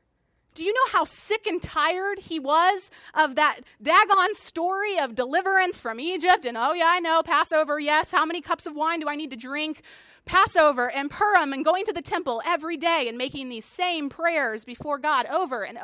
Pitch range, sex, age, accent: 255-330 Hz, female, 30-49, American